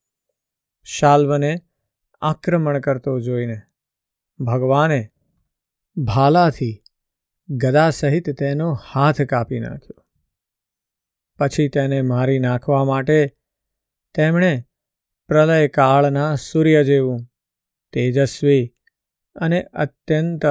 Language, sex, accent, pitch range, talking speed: Gujarati, male, native, 125-150 Hz, 80 wpm